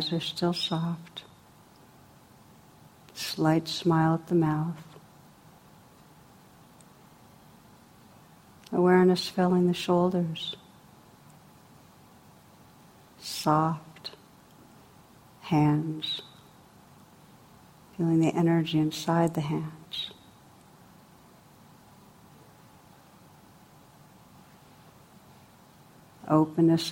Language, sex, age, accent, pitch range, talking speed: English, female, 60-79, American, 155-170 Hz, 45 wpm